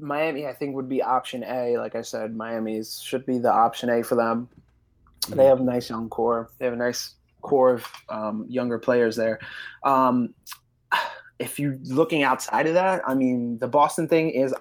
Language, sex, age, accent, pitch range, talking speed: English, male, 20-39, American, 120-130 Hz, 195 wpm